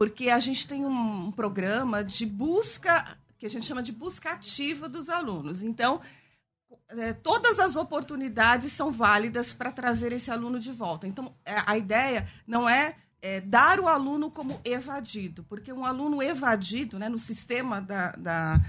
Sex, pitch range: female, 205-280 Hz